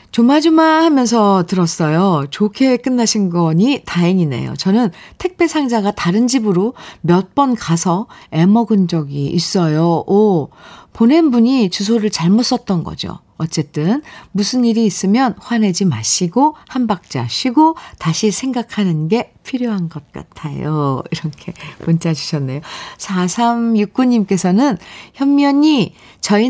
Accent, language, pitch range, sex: native, Korean, 165-235 Hz, female